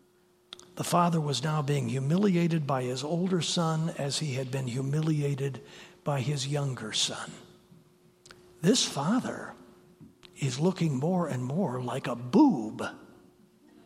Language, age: English, 60-79